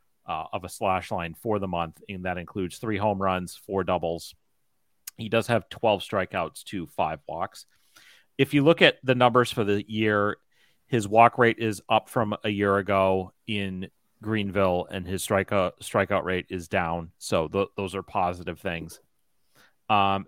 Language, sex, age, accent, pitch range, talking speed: English, male, 30-49, American, 95-110 Hz, 170 wpm